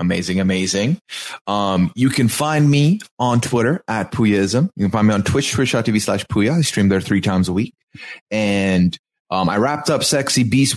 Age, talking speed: 30-49, 190 wpm